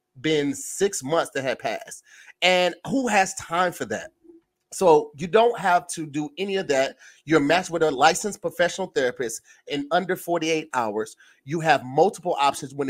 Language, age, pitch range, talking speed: English, 30-49, 135-180 Hz, 170 wpm